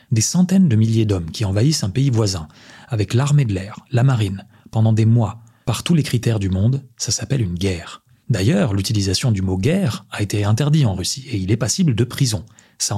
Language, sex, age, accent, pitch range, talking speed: French, male, 30-49, French, 100-130 Hz, 215 wpm